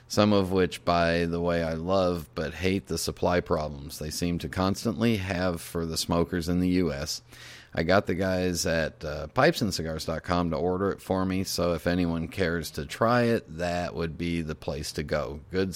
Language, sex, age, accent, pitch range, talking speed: English, male, 40-59, American, 80-100 Hz, 195 wpm